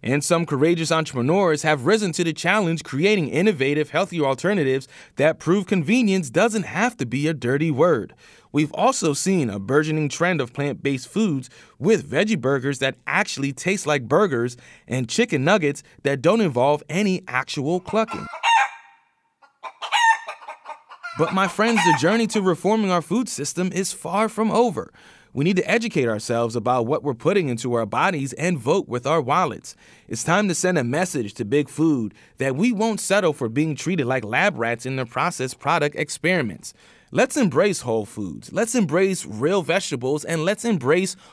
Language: English